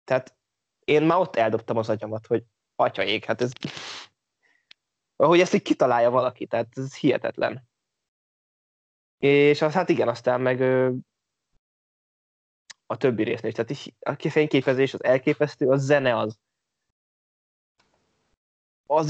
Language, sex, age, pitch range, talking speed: Hungarian, male, 20-39, 120-150 Hz, 120 wpm